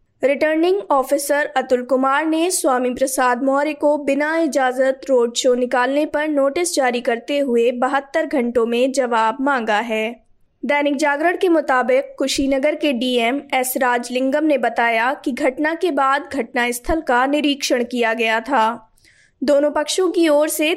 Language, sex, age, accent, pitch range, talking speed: Hindi, female, 20-39, native, 245-290 Hz, 145 wpm